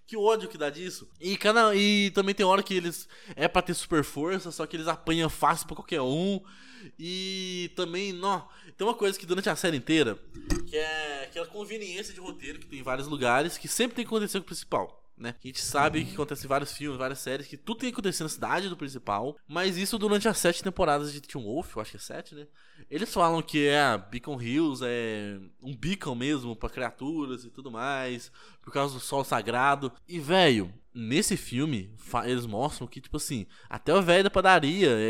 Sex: male